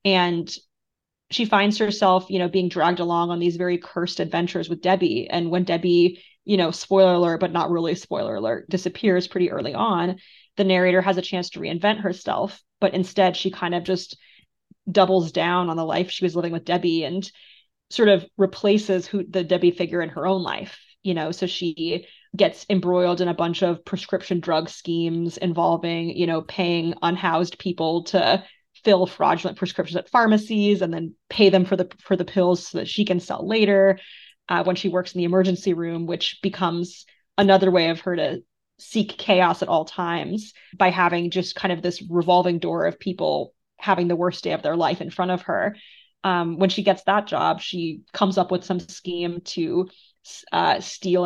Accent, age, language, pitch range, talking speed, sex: American, 30-49, English, 175-190 Hz, 190 wpm, female